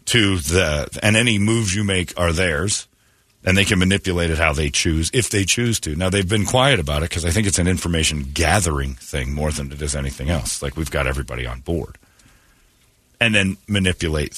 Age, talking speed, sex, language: 40-59, 210 wpm, male, English